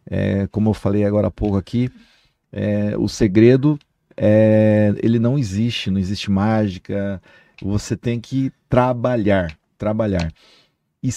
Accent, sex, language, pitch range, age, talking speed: Brazilian, male, Portuguese, 105-155 Hz, 50-69, 130 wpm